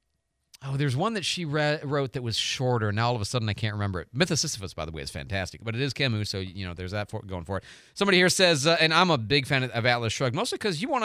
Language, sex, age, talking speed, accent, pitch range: English, male, 40-59, 305 wpm, American, 105-150 Hz